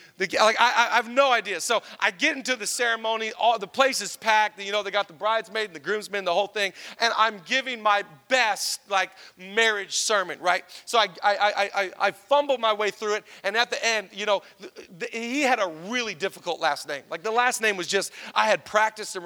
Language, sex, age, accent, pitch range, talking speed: English, male, 40-59, American, 200-245 Hz, 235 wpm